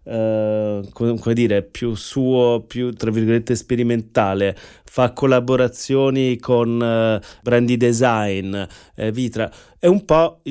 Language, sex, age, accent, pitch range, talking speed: Italian, male, 30-49, native, 115-135 Hz, 105 wpm